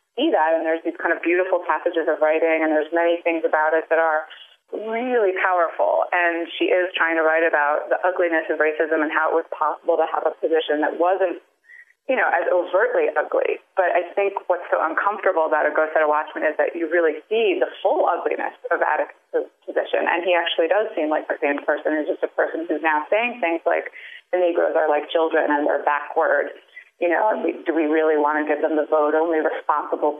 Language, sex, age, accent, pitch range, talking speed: English, female, 30-49, American, 155-195 Hz, 215 wpm